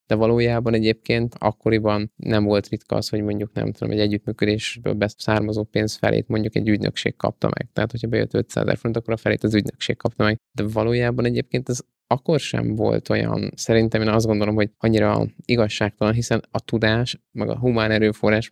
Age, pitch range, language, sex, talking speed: 20-39, 105-115 Hz, Hungarian, male, 185 wpm